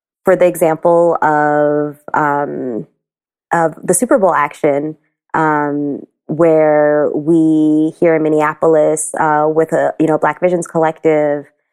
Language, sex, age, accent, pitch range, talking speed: English, female, 20-39, American, 150-170 Hz, 125 wpm